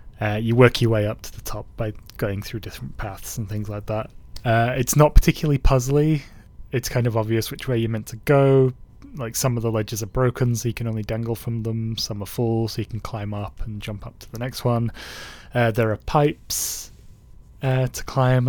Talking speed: 225 wpm